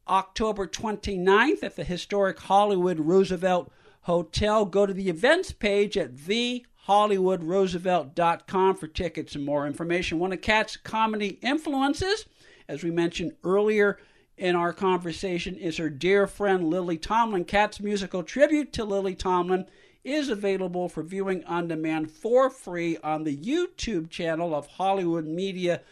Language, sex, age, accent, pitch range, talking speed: English, male, 60-79, American, 165-205 Hz, 135 wpm